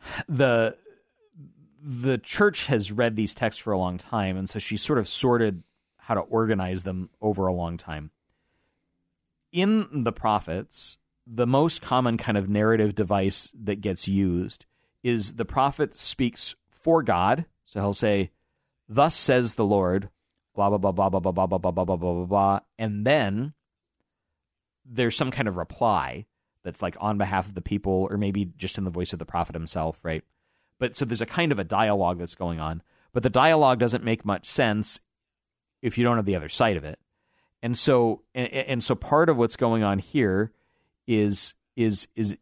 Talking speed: 180 wpm